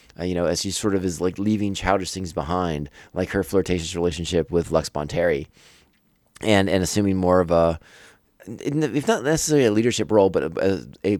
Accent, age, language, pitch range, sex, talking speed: American, 30-49, English, 85-110 Hz, male, 195 wpm